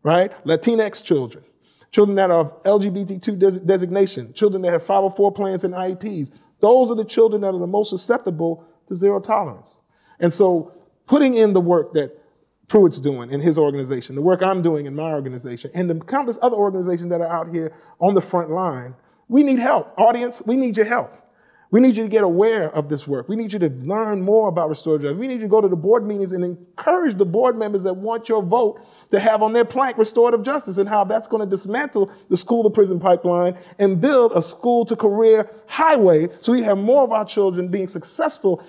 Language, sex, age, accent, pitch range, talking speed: English, male, 40-59, American, 165-220 Hz, 210 wpm